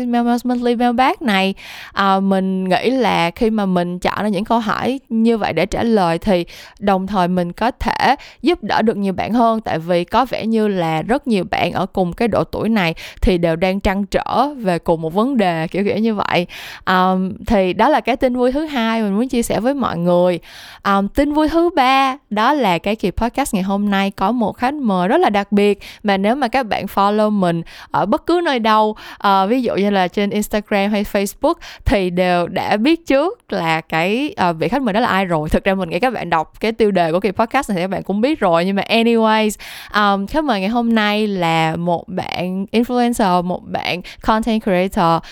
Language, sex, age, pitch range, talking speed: Vietnamese, female, 20-39, 185-240 Hz, 225 wpm